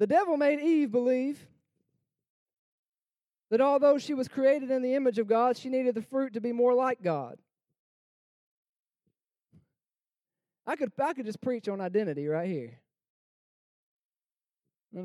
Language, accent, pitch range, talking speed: English, American, 245-360 Hz, 135 wpm